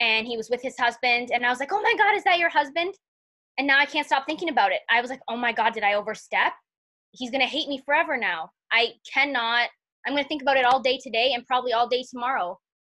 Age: 20-39